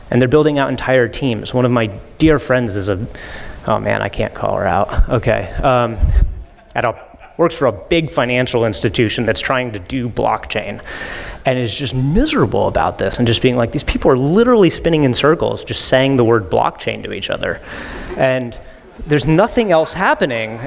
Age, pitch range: 30-49, 120-160 Hz